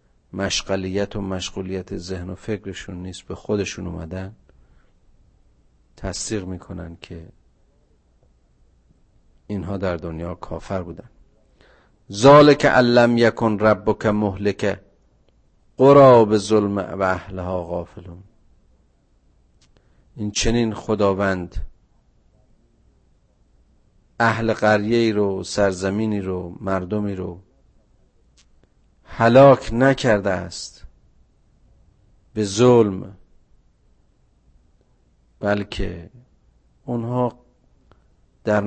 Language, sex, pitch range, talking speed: Persian, male, 90-110 Hz, 75 wpm